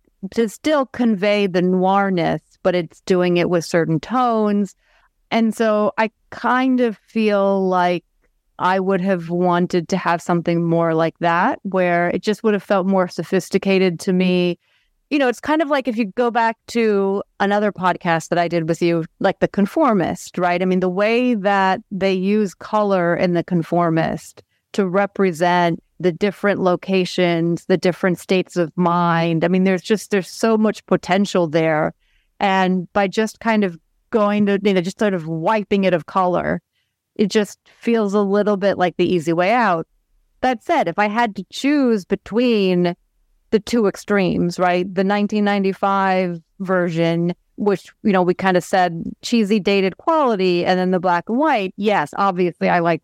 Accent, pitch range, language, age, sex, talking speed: American, 175-210 Hz, English, 30-49, female, 175 wpm